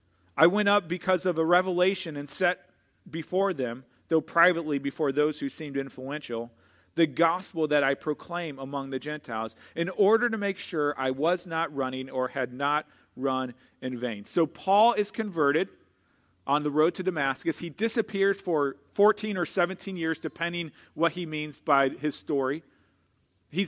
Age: 40-59